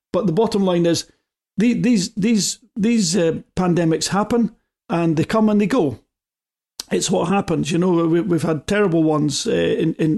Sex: male